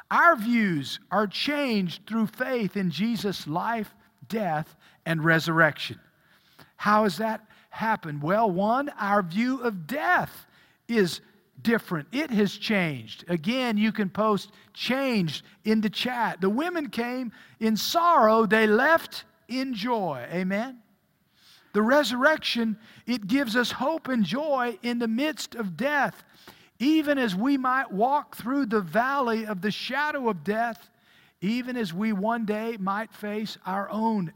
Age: 50-69